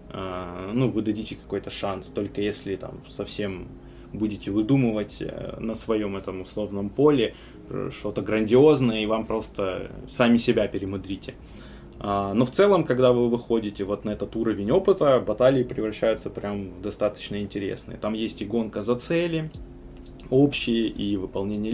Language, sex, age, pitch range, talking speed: Russian, male, 20-39, 100-125 Hz, 135 wpm